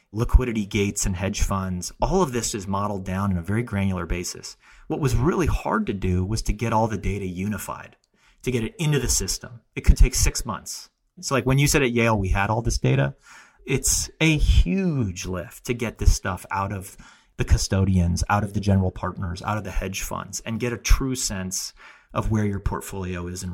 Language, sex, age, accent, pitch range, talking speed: English, male, 30-49, American, 95-115 Hz, 215 wpm